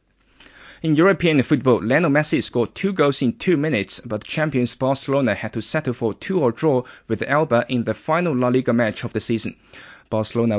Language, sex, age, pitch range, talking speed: English, male, 20-39, 110-140 Hz, 185 wpm